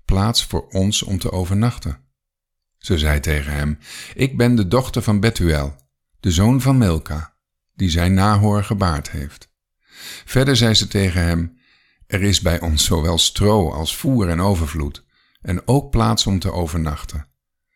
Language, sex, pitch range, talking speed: Dutch, male, 80-105 Hz, 155 wpm